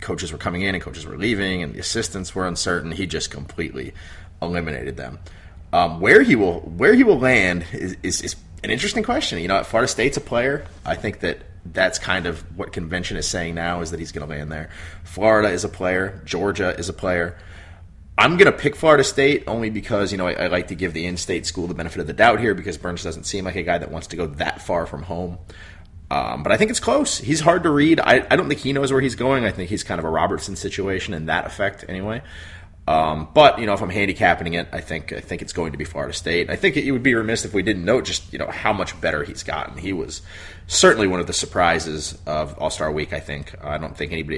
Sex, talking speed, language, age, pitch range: male, 255 wpm, English, 30-49, 80-95 Hz